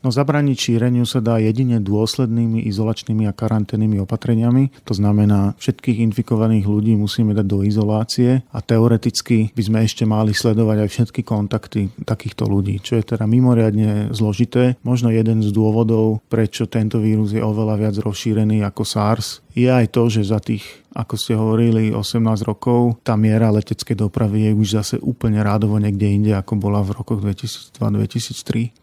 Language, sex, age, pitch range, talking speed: Slovak, male, 40-59, 110-120 Hz, 160 wpm